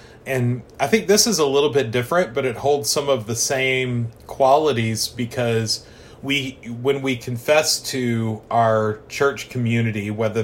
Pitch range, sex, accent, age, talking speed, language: 110-130 Hz, male, American, 30-49, 155 wpm, English